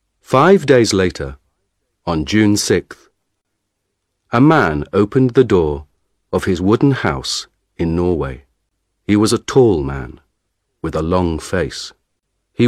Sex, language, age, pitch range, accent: male, Chinese, 40-59, 85-105 Hz, British